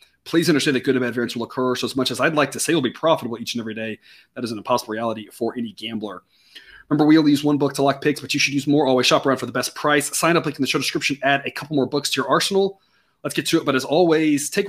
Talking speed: 315 wpm